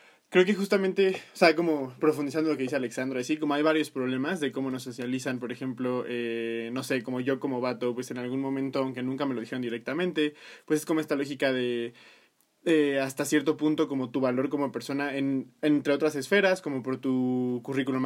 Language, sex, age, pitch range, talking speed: Spanish, male, 20-39, 130-150 Hz, 205 wpm